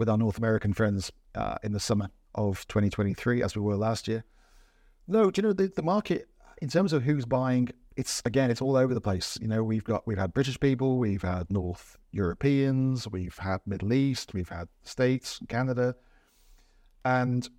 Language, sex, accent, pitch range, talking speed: English, male, British, 105-130 Hz, 190 wpm